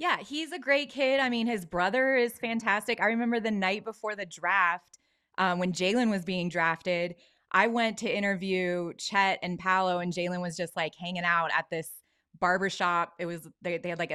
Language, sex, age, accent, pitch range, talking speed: English, female, 20-39, American, 175-235 Hz, 200 wpm